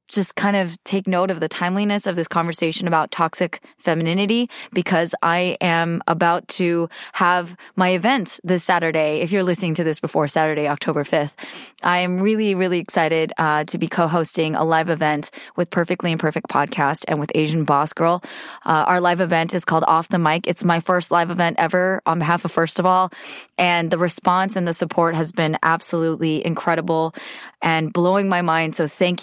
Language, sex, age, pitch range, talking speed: English, female, 20-39, 160-185 Hz, 185 wpm